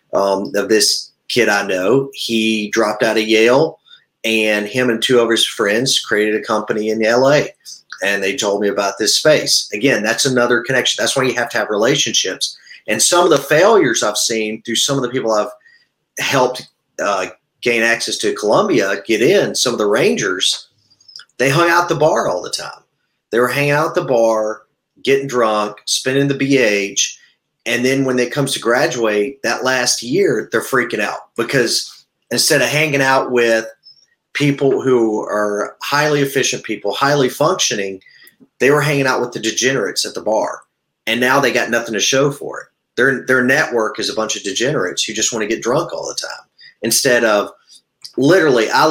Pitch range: 110-140 Hz